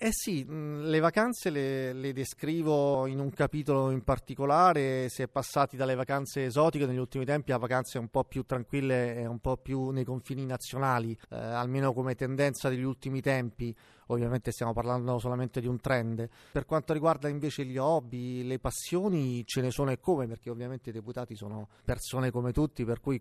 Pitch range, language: 120-135 Hz, Italian